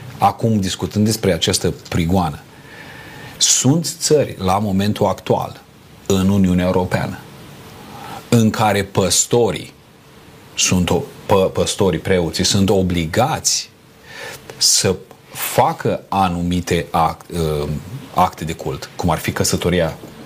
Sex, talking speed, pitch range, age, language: male, 90 wpm, 90-115 Hz, 40-59, Romanian